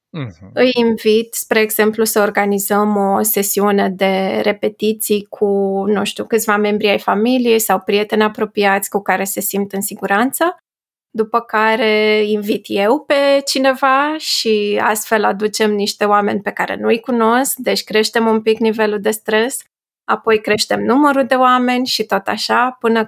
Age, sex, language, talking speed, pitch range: 20-39, female, Romanian, 150 wpm, 205-235 Hz